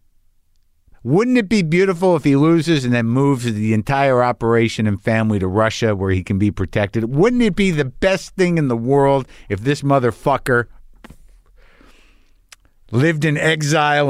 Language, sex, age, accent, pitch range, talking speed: English, male, 50-69, American, 95-140 Hz, 155 wpm